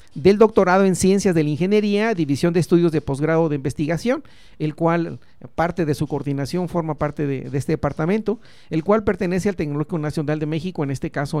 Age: 40-59